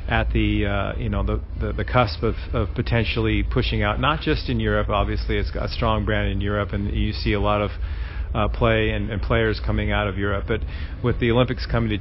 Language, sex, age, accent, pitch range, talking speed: English, male, 40-59, American, 100-115 Hz, 235 wpm